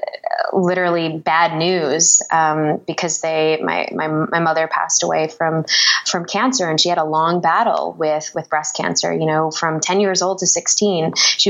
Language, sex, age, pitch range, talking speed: English, female, 20-39, 165-185 Hz, 175 wpm